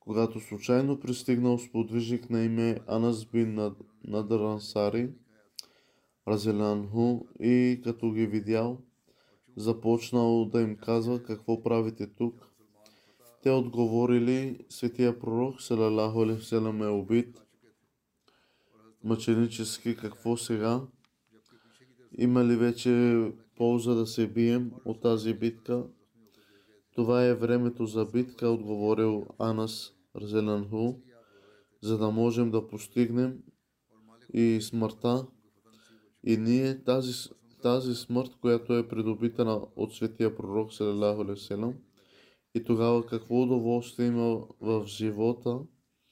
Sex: male